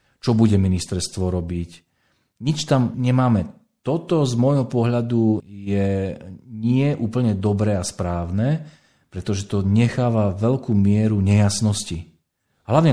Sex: male